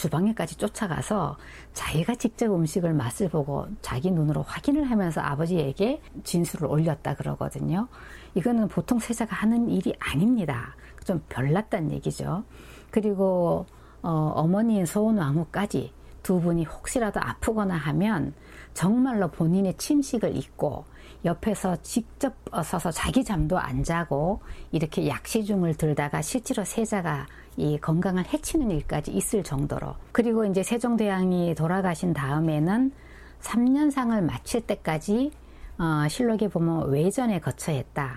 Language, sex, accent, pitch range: Korean, female, native, 155-215 Hz